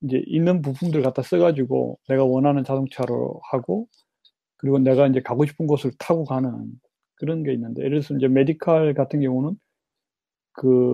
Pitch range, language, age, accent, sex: 135-175 Hz, Korean, 30-49, native, male